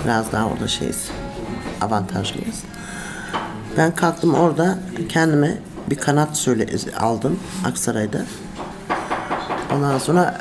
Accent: native